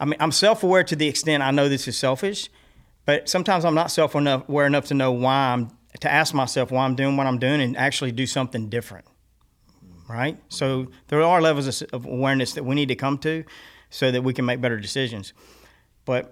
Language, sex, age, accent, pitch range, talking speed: English, male, 40-59, American, 120-140 Hz, 210 wpm